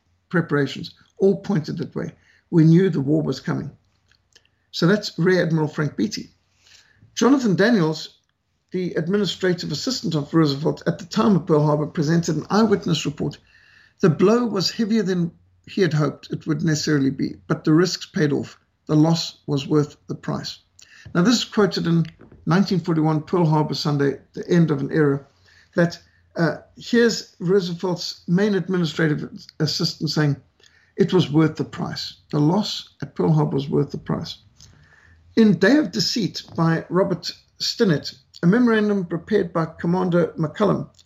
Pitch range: 150-195 Hz